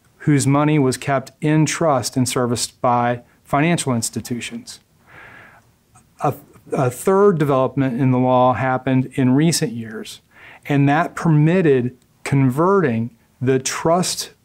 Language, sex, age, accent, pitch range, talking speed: English, male, 40-59, American, 125-150 Hz, 115 wpm